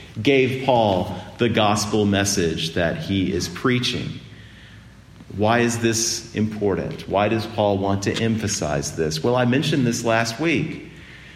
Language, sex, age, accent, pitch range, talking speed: English, male, 40-59, American, 100-140 Hz, 135 wpm